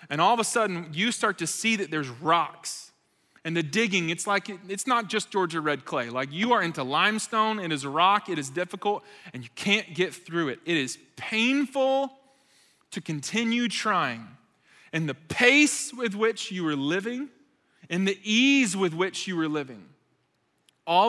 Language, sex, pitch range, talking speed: English, male, 165-220 Hz, 180 wpm